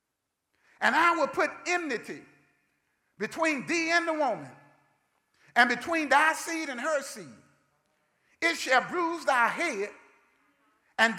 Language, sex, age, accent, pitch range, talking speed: English, male, 50-69, American, 295-340 Hz, 125 wpm